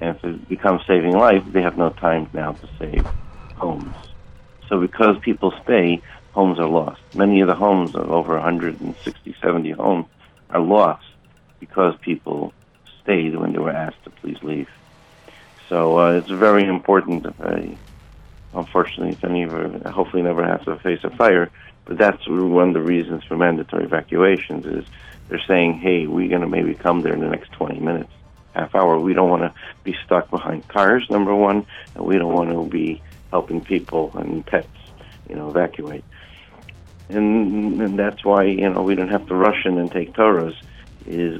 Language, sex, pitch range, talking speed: English, male, 85-100 Hz, 175 wpm